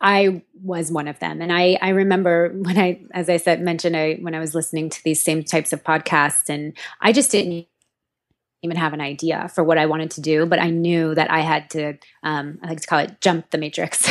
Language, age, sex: English, 20-39, female